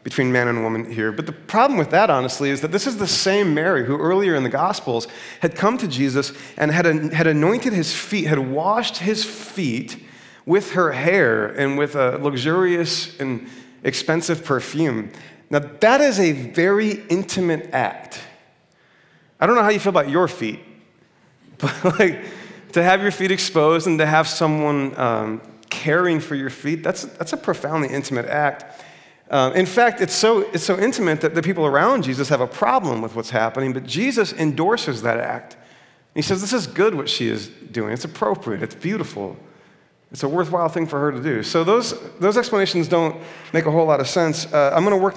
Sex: male